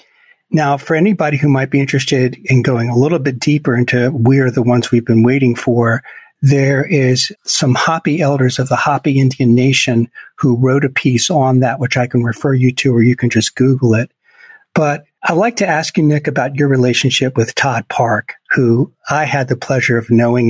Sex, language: male, English